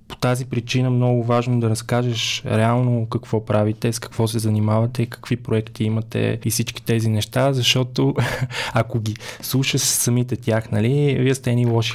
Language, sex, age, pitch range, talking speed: Bulgarian, male, 20-39, 110-125 Hz, 160 wpm